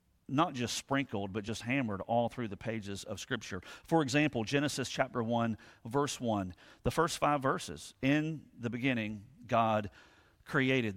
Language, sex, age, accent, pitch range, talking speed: English, male, 40-59, American, 120-155 Hz, 155 wpm